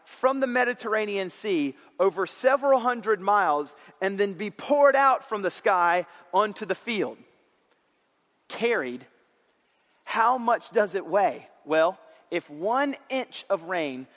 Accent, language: American, English